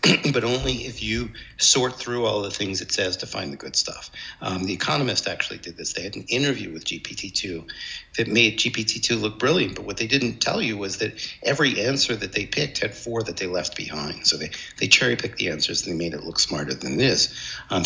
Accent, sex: American, male